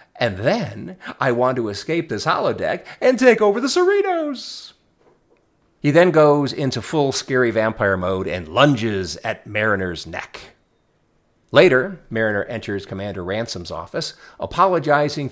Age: 40-59